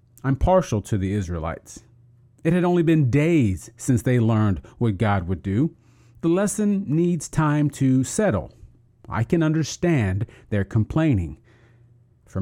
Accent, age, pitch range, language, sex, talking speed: American, 40-59, 110-135 Hz, English, male, 140 wpm